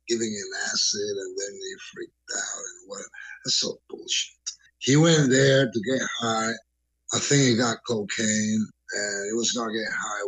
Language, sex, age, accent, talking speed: English, male, 50-69, American, 185 wpm